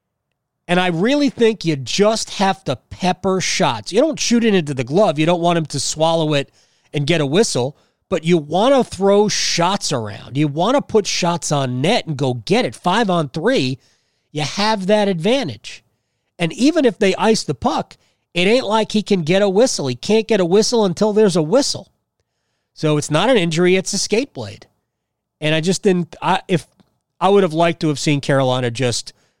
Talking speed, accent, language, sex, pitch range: 205 wpm, American, English, male, 135-190 Hz